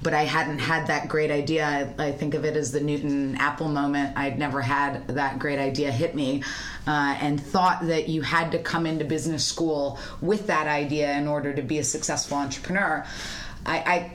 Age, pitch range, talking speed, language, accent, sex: 30-49, 145-165 Hz, 195 wpm, English, American, female